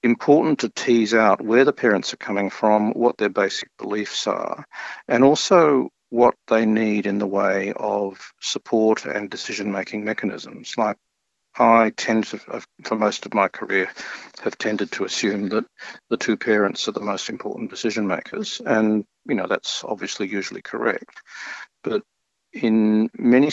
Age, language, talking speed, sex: 50-69, English, 155 wpm, male